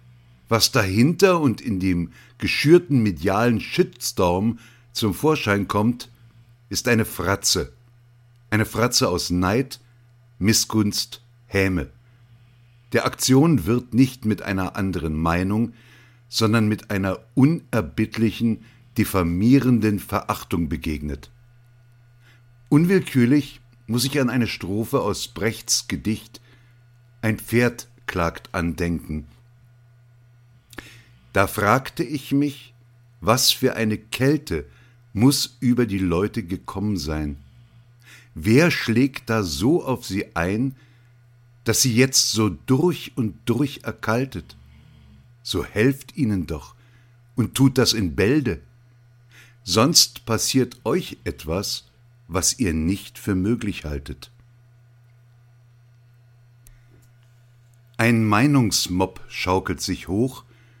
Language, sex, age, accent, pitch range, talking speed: German, male, 60-79, German, 105-120 Hz, 100 wpm